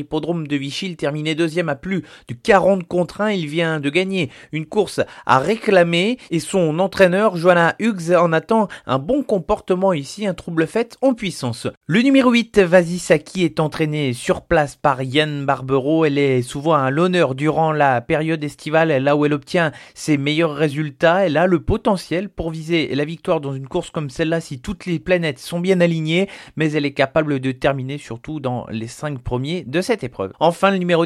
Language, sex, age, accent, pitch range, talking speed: French, male, 30-49, French, 145-185 Hz, 195 wpm